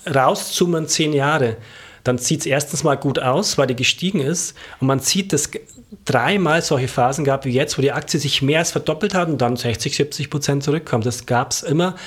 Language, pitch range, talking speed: German, 125-155 Hz, 215 wpm